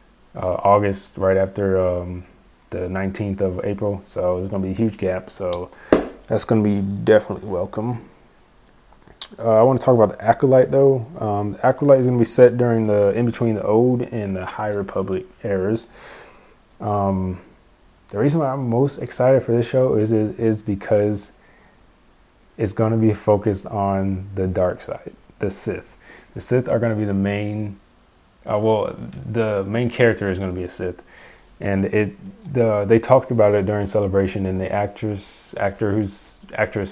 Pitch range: 95-115 Hz